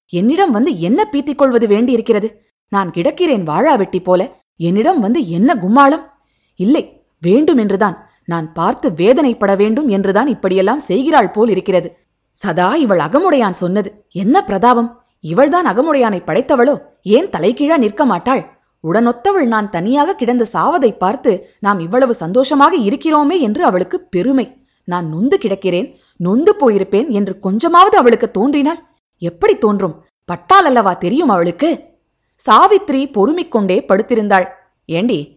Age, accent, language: 20-39, native, Tamil